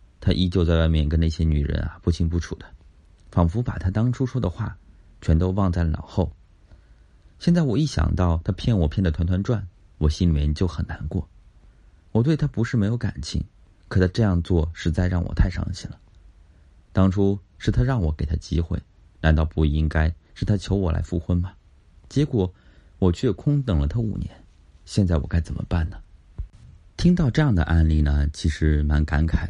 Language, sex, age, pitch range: Chinese, male, 30-49, 80-95 Hz